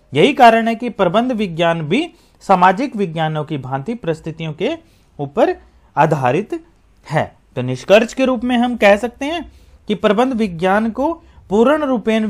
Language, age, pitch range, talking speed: Hindi, 40-59, 145-205 Hz, 150 wpm